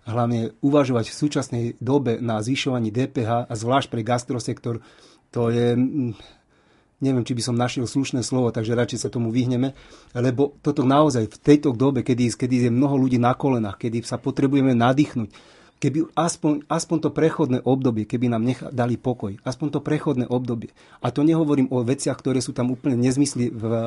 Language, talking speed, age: Slovak, 170 wpm, 30-49